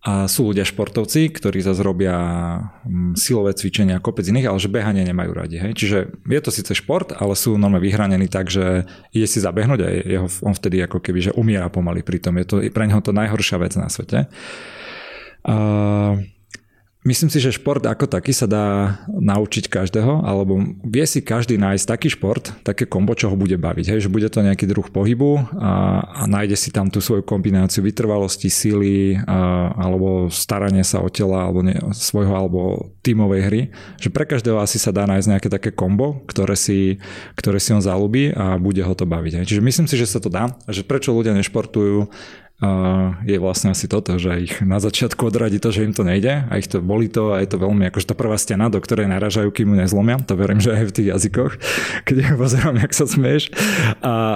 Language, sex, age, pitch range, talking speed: Slovak, male, 30-49, 95-115 Hz, 205 wpm